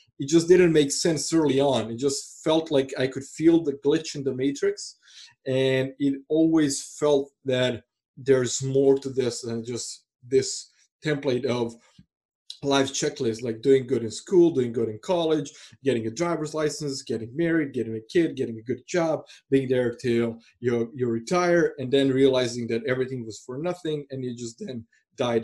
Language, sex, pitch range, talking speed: English, male, 120-150 Hz, 180 wpm